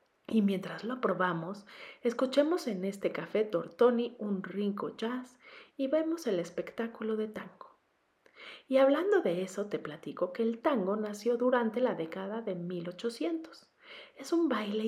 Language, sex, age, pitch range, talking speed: Spanish, female, 40-59, 180-250 Hz, 145 wpm